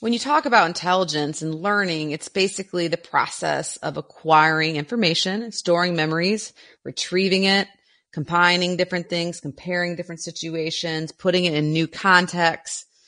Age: 30-49